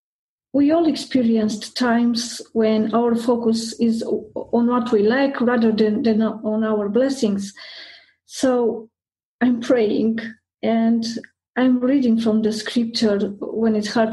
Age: 40-59